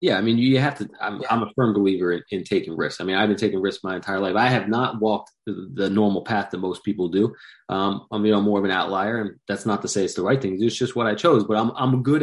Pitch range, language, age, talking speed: 105-140 Hz, English, 30-49, 295 wpm